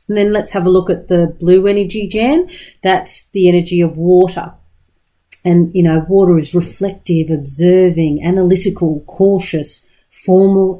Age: 40-59